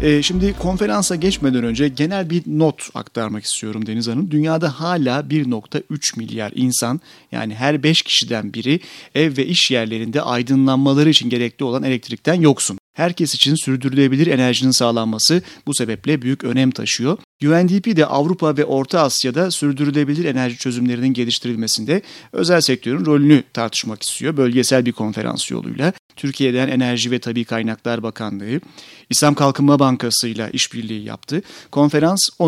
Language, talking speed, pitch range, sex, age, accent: Turkish, 135 wpm, 120-155 Hz, male, 40-59, native